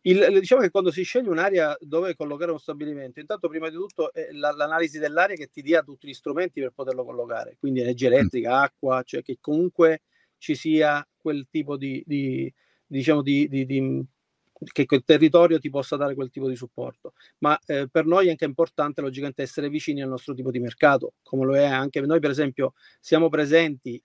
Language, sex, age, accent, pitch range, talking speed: Italian, male, 40-59, native, 140-165 Hz, 195 wpm